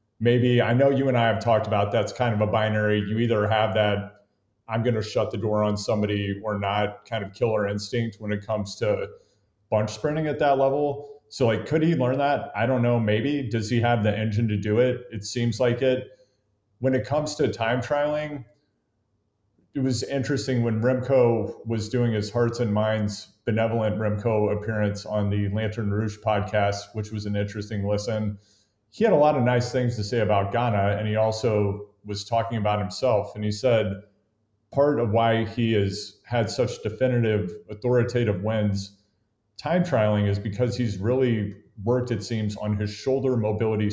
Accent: American